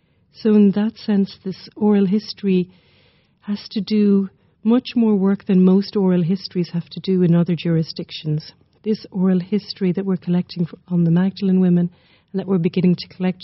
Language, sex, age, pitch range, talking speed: English, female, 40-59, 170-195 Hz, 175 wpm